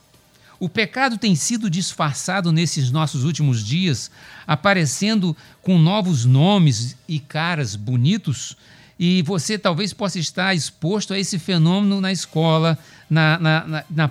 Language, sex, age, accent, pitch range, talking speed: Portuguese, male, 60-79, Brazilian, 155-205 Hz, 125 wpm